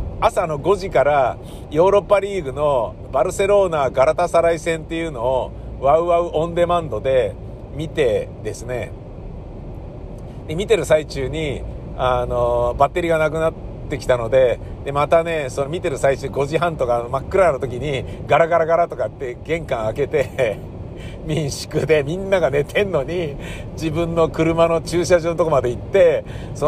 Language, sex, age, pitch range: Japanese, male, 50-69, 125-170 Hz